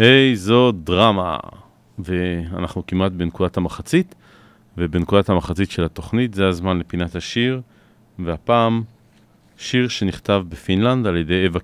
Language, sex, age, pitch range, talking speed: Hebrew, male, 40-59, 90-115 Hz, 110 wpm